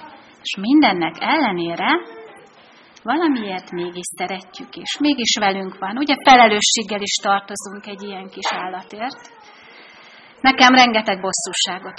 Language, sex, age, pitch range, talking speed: Hungarian, female, 30-49, 195-260 Hz, 105 wpm